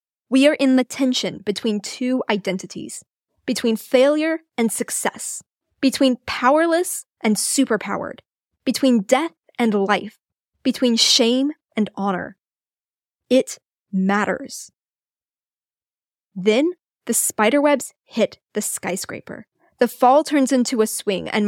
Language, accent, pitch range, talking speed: English, American, 220-290 Hz, 110 wpm